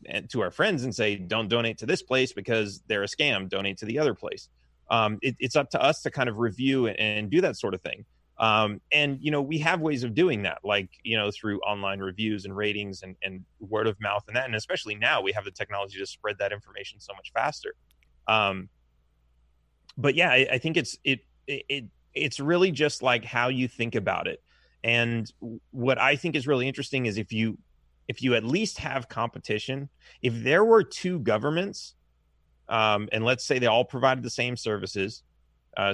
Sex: male